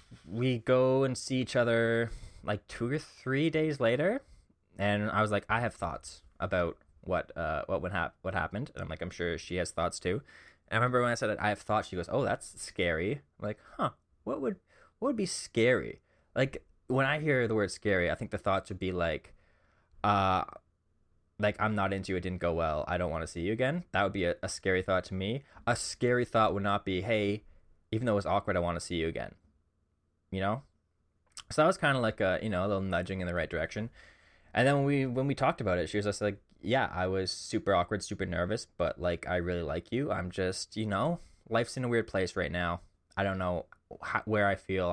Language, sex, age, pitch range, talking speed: English, male, 20-39, 85-110 Hz, 240 wpm